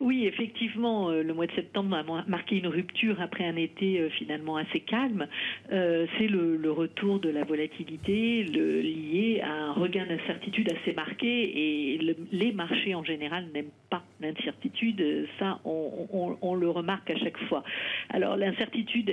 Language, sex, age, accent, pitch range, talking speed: French, female, 50-69, French, 160-205 Hz, 145 wpm